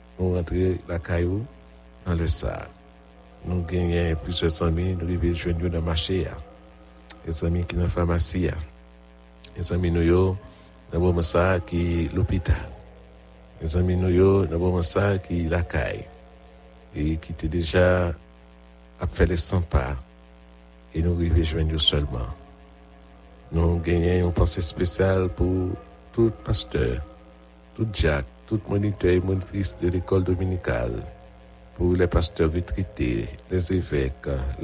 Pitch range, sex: 65-90 Hz, male